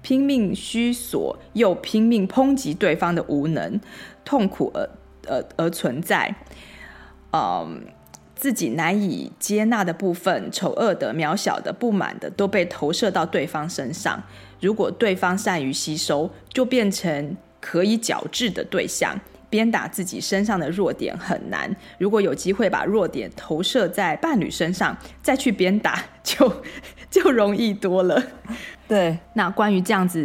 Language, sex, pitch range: Chinese, female, 170-220 Hz